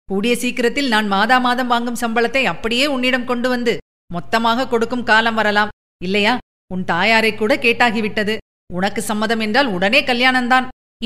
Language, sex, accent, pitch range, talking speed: Tamil, female, native, 195-260 Hz, 130 wpm